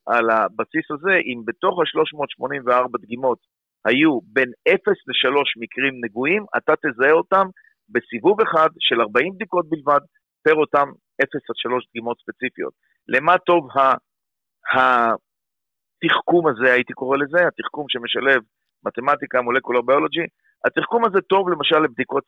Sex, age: male, 50-69